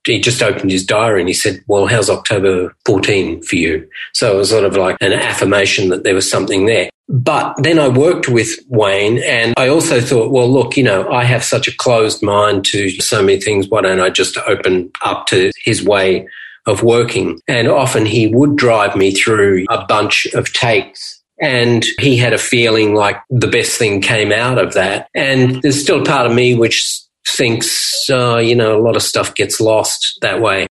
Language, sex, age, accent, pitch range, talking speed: English, male, 40-59, Australian, 100-125 Hz, 205 wpm